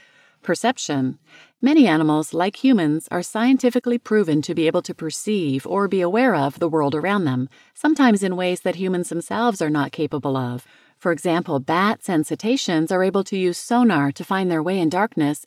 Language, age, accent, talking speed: English, 40-59, American, 180 wpm